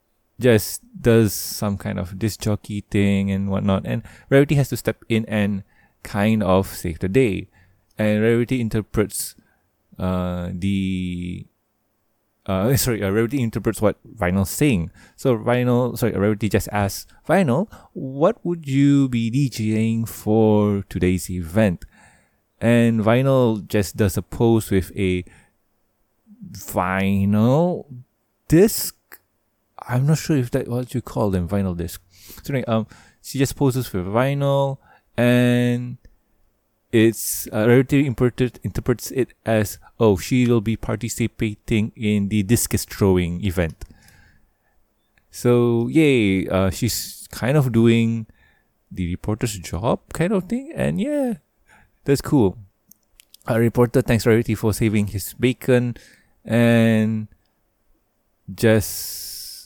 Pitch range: 100-120 Hz